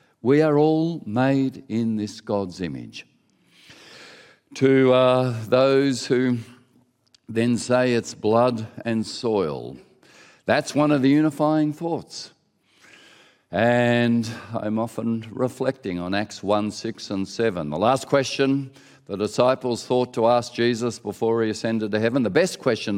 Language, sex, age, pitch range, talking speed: English, male, 50-69, 115-145 Hz, 135 wpm